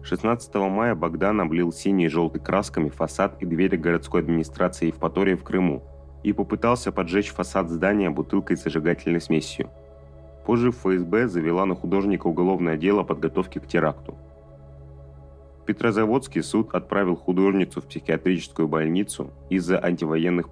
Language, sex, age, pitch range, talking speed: Russian, male, 30-49, 75-95 Hz, 130 wpm